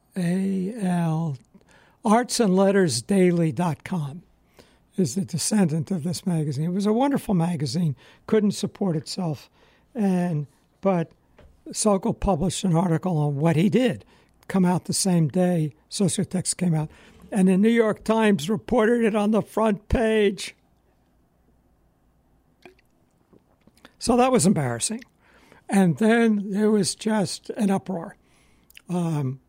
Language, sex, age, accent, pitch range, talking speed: English, male, 60-79, American, 160-200 Hz, 130 wpm